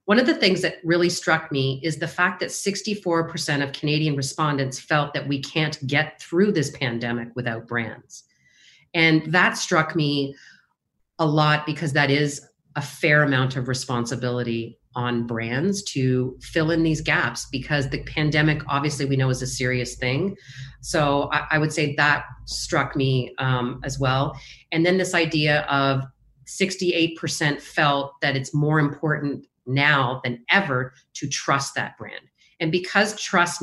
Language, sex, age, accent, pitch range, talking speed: English, female, 40-59, American, 130-160 Hz, 160 wpm